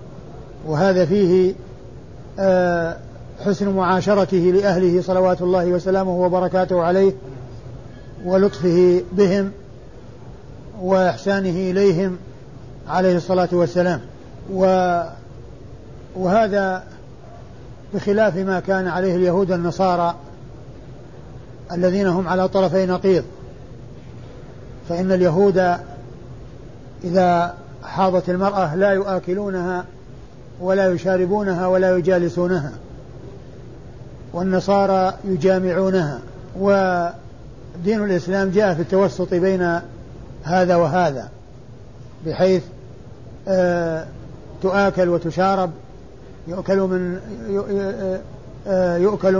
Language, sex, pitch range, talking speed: Arabic, male, 130-190 Hz, 70 wpm